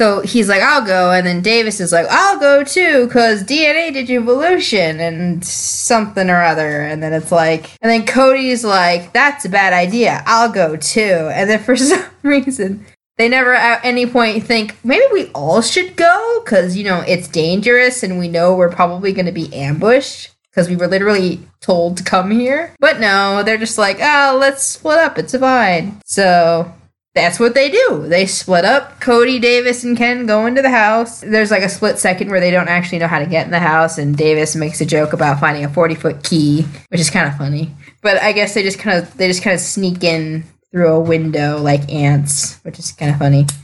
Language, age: English, 20-39